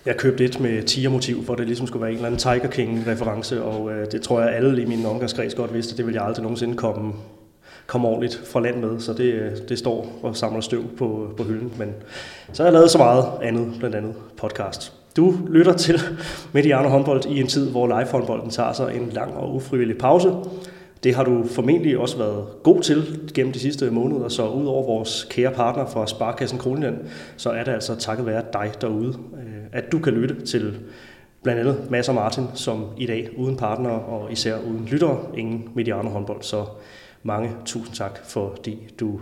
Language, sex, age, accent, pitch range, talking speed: Danish, male, 30-49, native, 115-130 Hz, 205 wpm